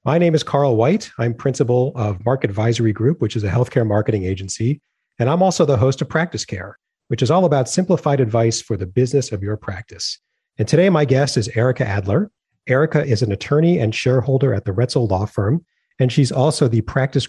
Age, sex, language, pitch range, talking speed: 40-59, male, English, 110-135 Hz, 210 wpm